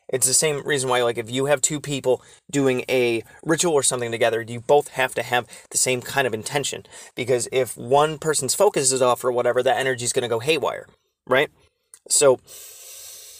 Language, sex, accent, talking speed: English, male, American, 200 wpm